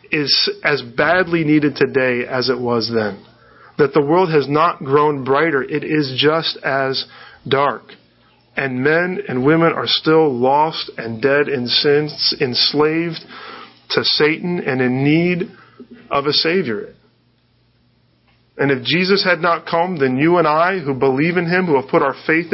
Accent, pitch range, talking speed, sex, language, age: American, 125-160 Hz, 160 wpm, male, English, 40-59